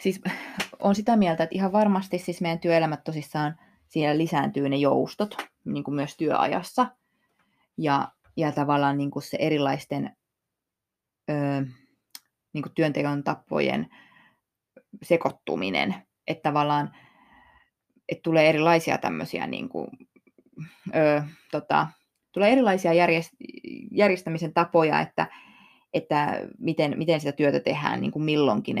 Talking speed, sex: 115 wpm, female